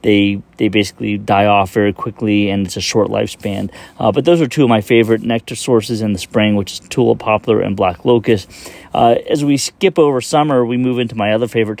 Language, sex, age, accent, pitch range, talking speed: English, male, 30-49, American, 110-125 Hz, 225 wpm